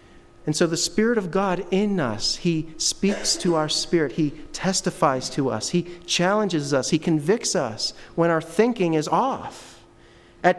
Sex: male